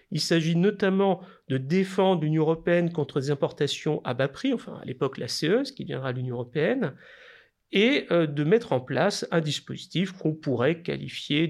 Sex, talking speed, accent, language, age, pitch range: male, 170 wpm, French, French, 40-59, 145-200 Hz